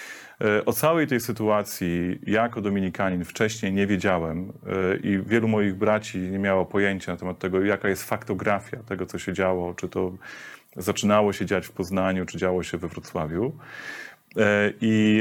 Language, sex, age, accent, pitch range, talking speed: English, male, 30-49, Polish, 95-110 Hz, 155 wpm